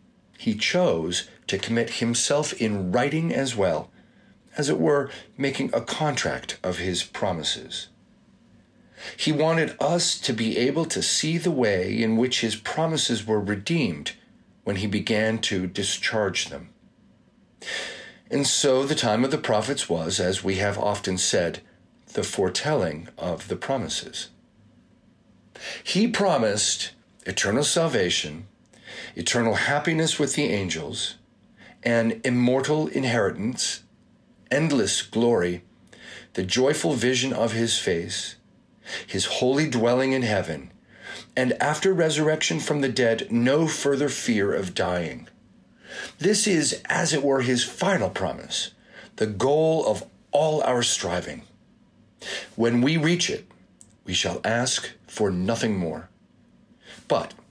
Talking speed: 125 wpm